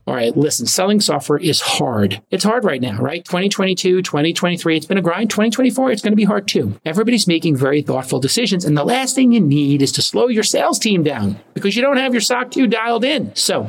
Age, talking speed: 40-59, 230 wpm